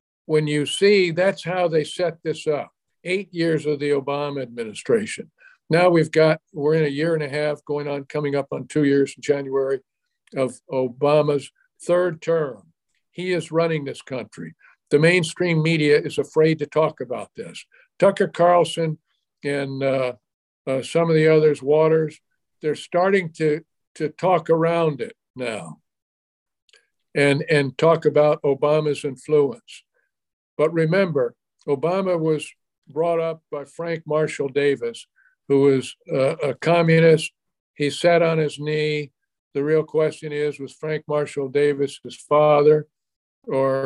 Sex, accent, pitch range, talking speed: male, American, 145-165 Hz, 145 wpm